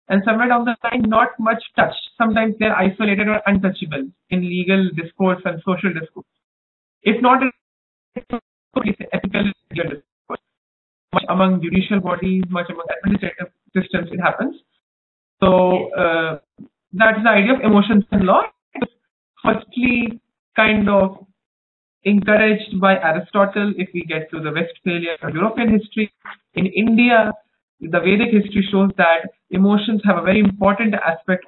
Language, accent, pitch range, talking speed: English, Indian, 180-225 Hz, 135 wpm